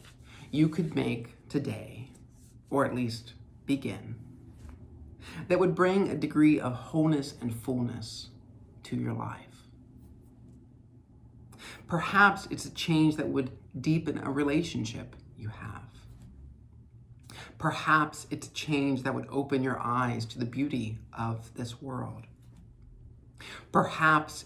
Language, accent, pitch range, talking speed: English, American, 115-145 Hz, 115 wpm